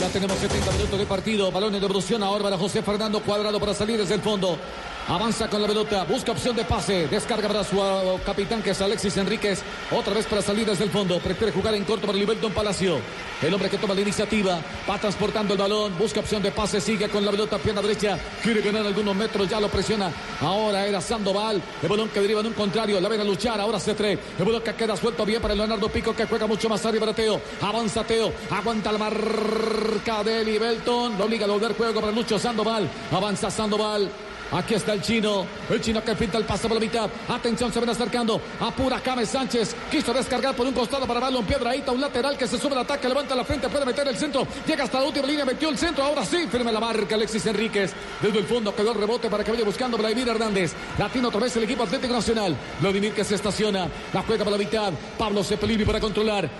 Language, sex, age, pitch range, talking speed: Spanish, male, 50-69, 205-225 Hz, 230 wpm